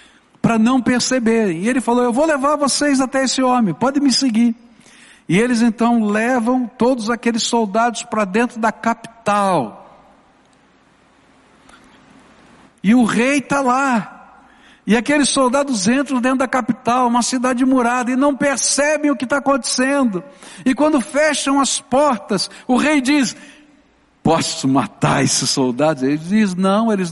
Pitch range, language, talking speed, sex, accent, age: 180-250 Hz, Portuguese, 145 wpm, male, Brazilian, 60-79